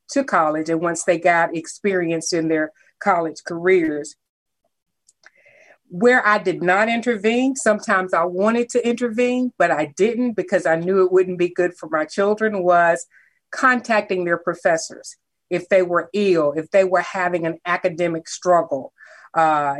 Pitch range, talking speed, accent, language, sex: 165-195 Hz, 150 wpm, American, English, female